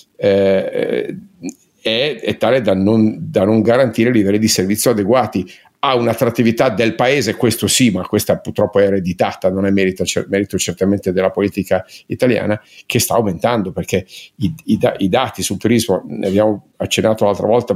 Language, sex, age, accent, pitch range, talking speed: Italian, male, 50-69, native, 100-110 Hz, 145 wpm